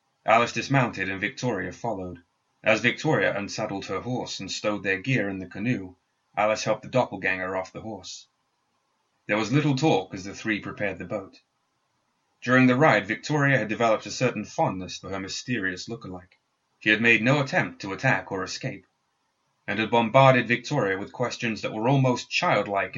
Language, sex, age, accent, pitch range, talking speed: English, male, 30-49, British, 100-130 Hz, 170 wpm